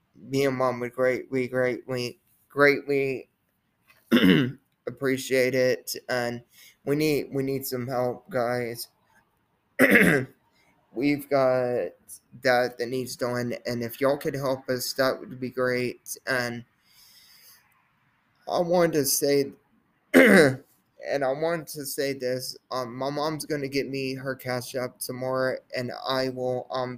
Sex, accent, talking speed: male, American, 130 wpm